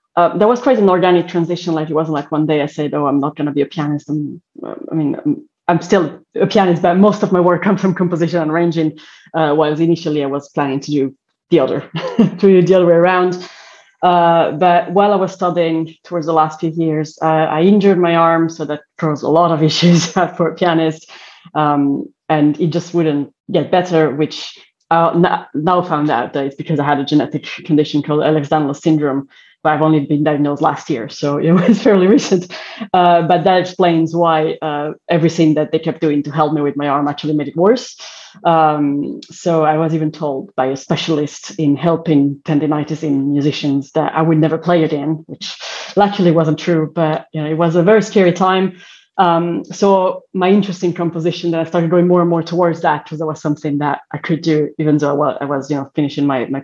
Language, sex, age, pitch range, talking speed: English, female, 30-49, 150-175 Hz, 220 wpm